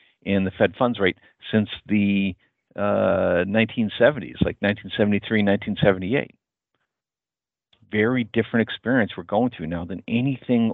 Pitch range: 95-115 Hz